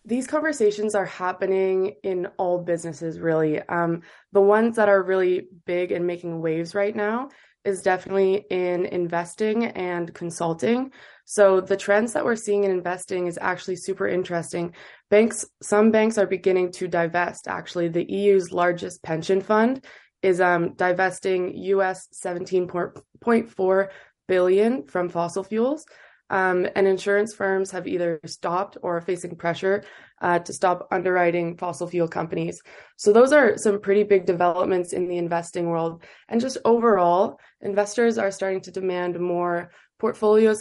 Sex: female